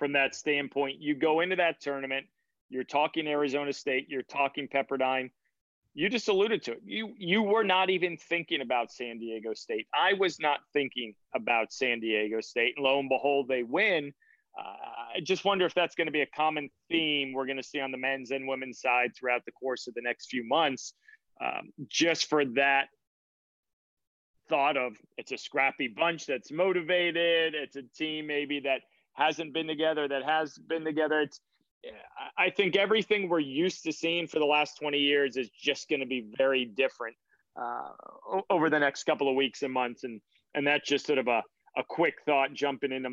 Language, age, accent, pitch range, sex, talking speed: English, 30-49, American, 130-160 Hz, male, 195 wpm